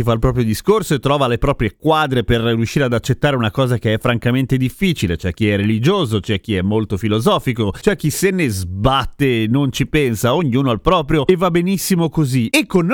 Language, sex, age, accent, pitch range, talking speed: Italian, male, 30-49, native, 120-165 Hz, 215 wpm